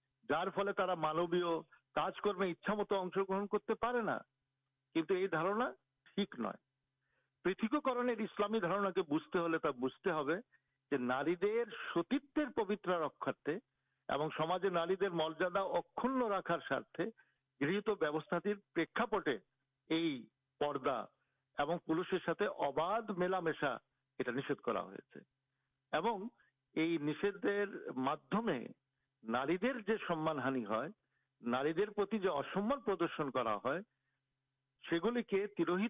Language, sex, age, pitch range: Urdu, male, 60-79, 145-210 Hz